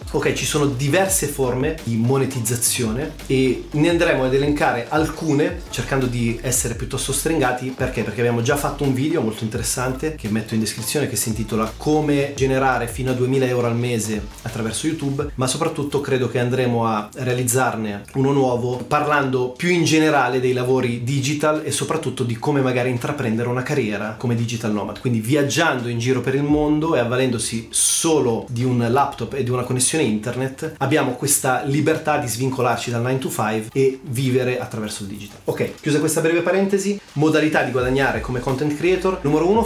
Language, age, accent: Italian, 30-49, native